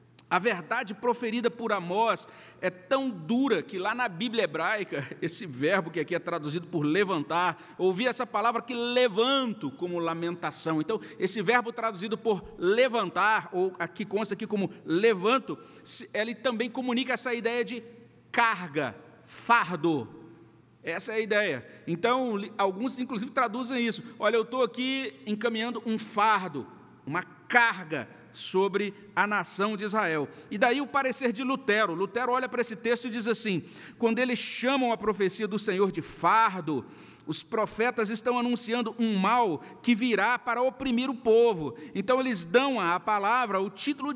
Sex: male